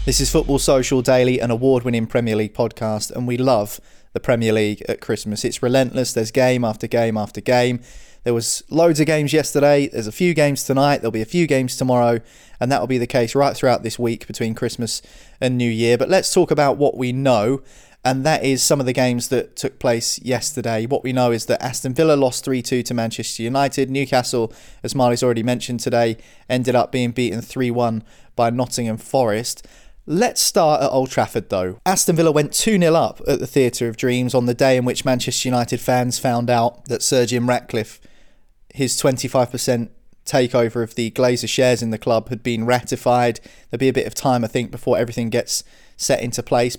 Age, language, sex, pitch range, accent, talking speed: 20-39, English, male, 120-135 Hz, British, 205 wpm